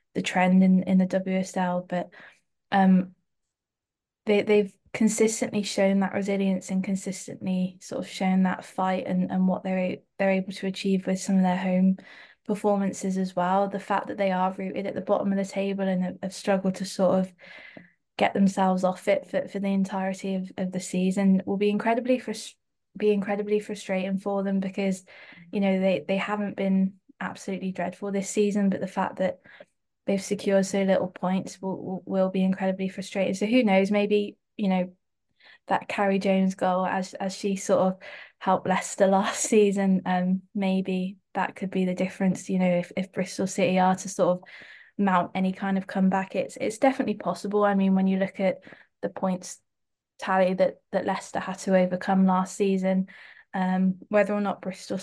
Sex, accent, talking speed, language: female, British, 185 wpm, English